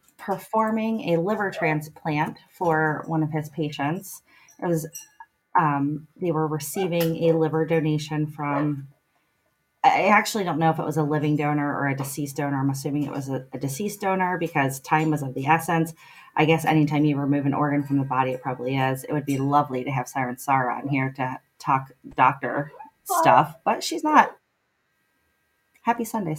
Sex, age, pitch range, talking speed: female, 30-49, 145-185 Hz, 180 wpm